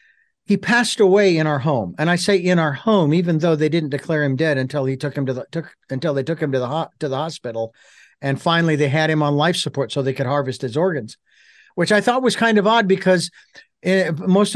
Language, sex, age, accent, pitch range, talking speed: English, male, 50-69, American, 155-195 Hz, 245 wpm